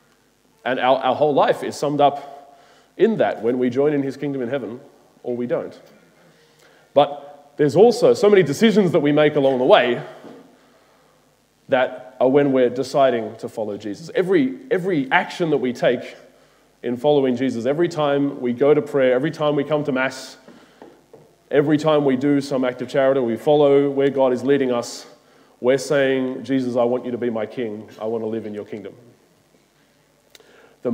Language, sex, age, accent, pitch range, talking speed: English, male, 30-49, Australian, 130-165 Hz, 185 wpm